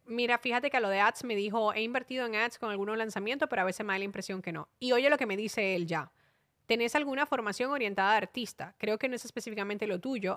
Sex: female